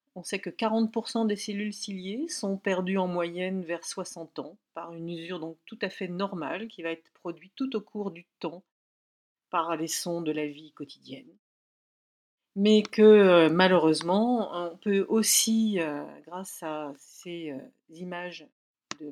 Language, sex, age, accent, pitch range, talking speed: French, female, 50-69, French, 165-210 Hz, 155 wpm